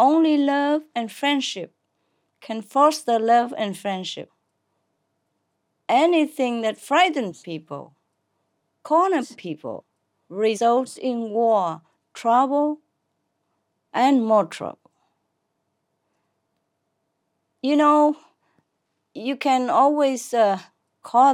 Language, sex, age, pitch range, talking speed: English, female, 40-59, 205-285 Hz, 80 wpm